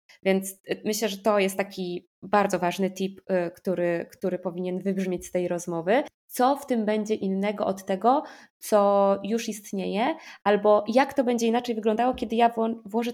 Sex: female